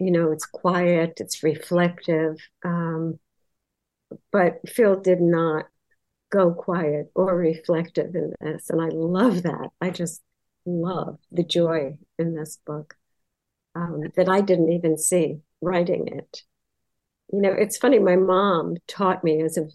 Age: 50-69